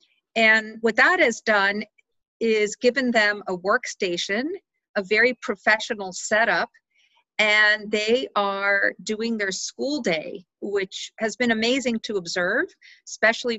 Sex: female